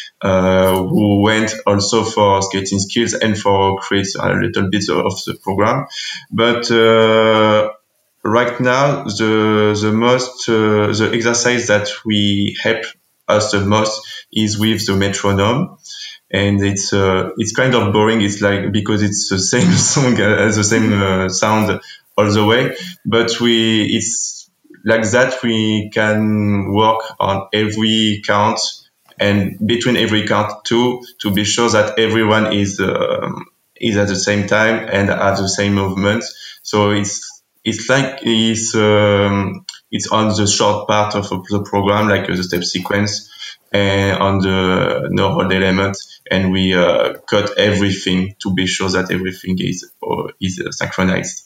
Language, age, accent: English, 20-39, French